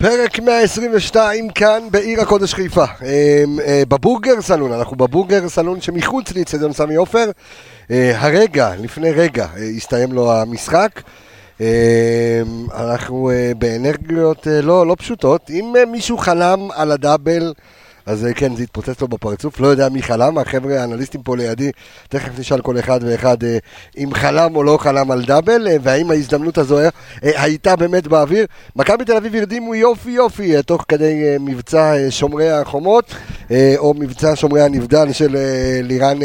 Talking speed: 135 wpm